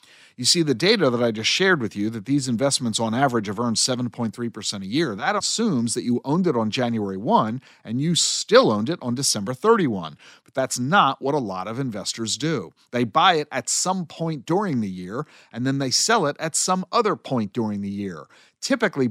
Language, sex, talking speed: English, male, 215 wpm